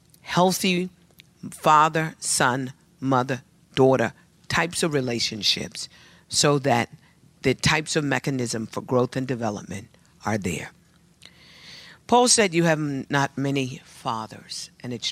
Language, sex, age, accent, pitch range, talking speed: English, female, 50-69, American, 115-150 Hz, 115 wpm